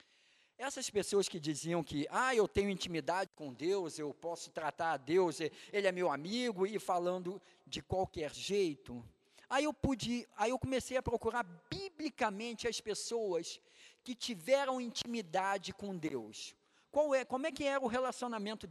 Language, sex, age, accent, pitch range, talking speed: Portuguese, male, 50-69, Brazilian, 170-240 Hz, 155 wpm